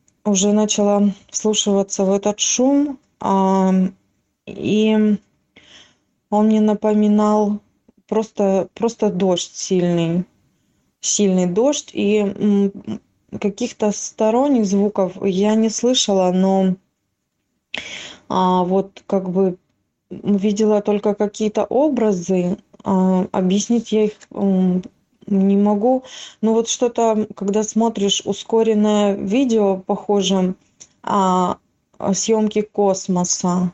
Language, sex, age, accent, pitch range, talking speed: Russian, female, 20-39, native, 195-215 Hz, 85 wpm